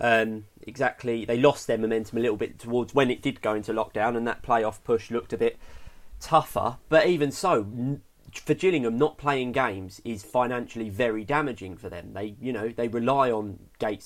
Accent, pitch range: British, 115-135 Hz